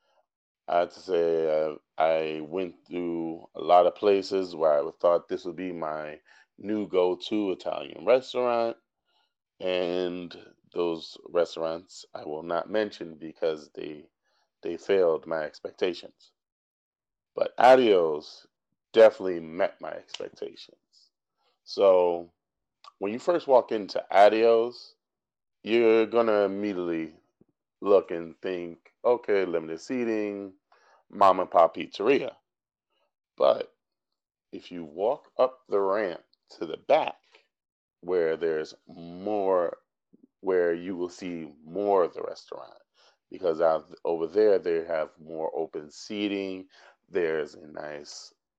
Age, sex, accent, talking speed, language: 30-49, male, American, 115 wpm, English